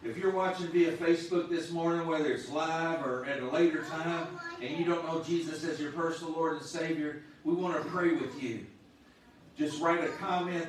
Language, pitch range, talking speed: English, 155-170 Hz, 200 wpm